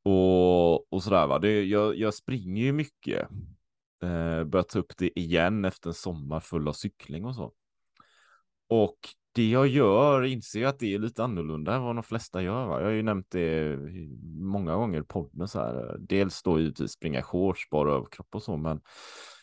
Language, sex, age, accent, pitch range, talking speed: Swedish, male, 30-49, Norwegian, 80-105 Hz, 190 wpm